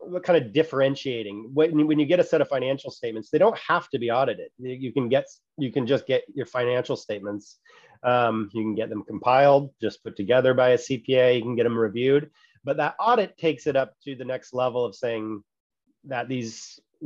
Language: English